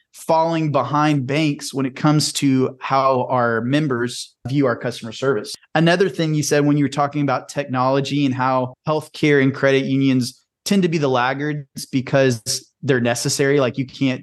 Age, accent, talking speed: 30-49, American, 175 wpm